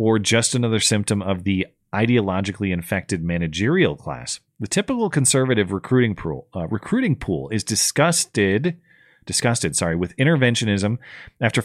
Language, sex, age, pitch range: English, male, 30-49, 100-135 Hz